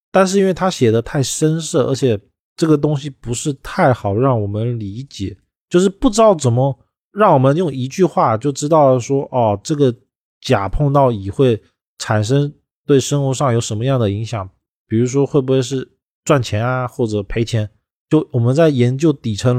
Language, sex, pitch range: Chinese, male, 110-145 Hz